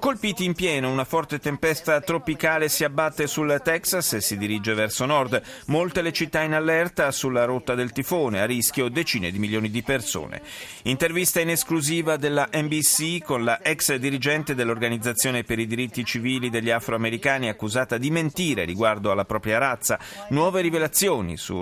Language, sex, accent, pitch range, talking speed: Italian, male, native, 115-155 Hz, 160 wpm